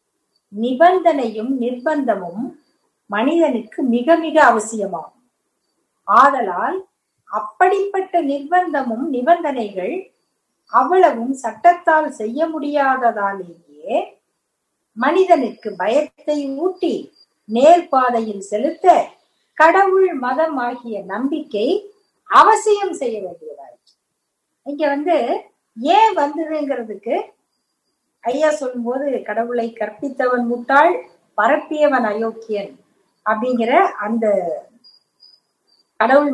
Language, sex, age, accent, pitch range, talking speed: Tamil, female, 50-69, native, 225-325 Hz, 65 wpm